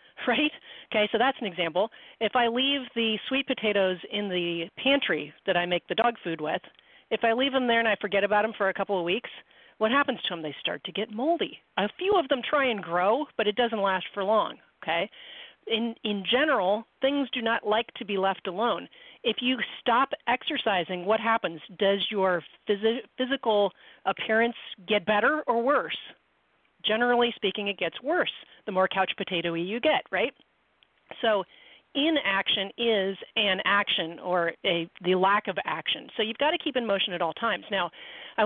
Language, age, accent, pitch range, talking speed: English, 40-59, American, 195-250 Hz, 190 wpm